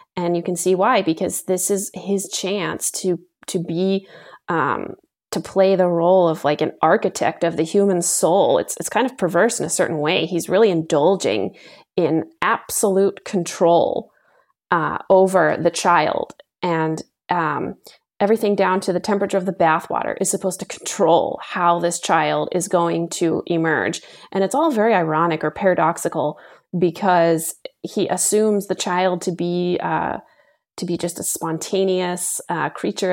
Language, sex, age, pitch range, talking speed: English, female, 30-49, 170-195 Hz, 160 wpm